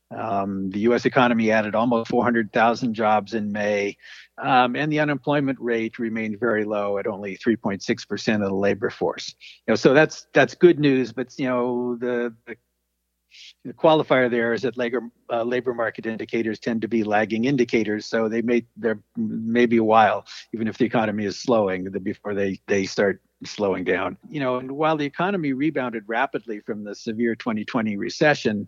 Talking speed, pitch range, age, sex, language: 175 wpm, 105-125 Hz, 50-69, male, English